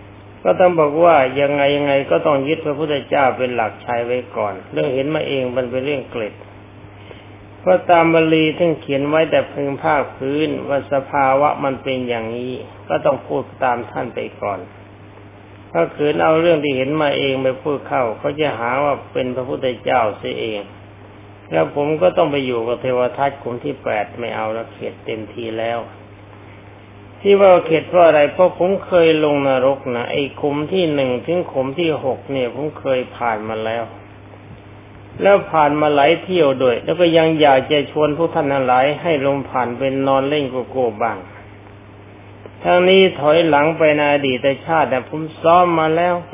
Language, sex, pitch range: Thai, male, 105-155 Hz